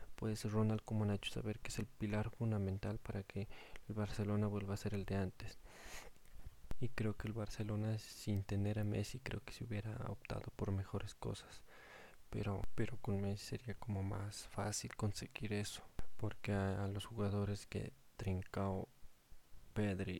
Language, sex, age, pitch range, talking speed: Spanish, male, 20-39, 100-110 Hz, 165 wpm